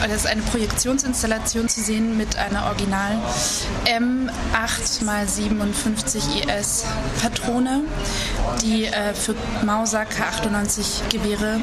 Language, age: German, 20-39